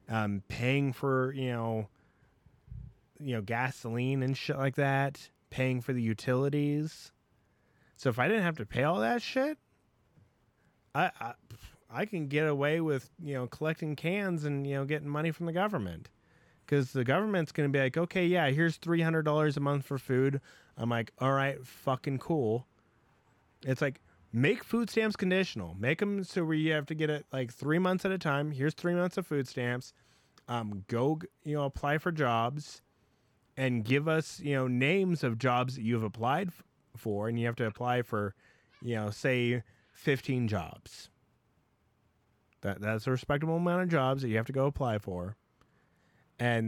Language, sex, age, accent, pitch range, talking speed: English, male, 20-39, American, 115-150 Hz, 175 wpm